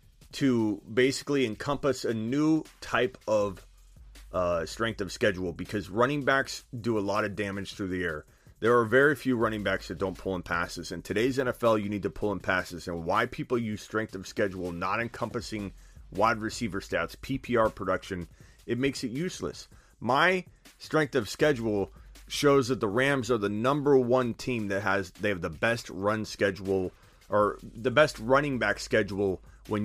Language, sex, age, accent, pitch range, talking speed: English, male, 30-49, American, 95-130 Hz, 175 wpm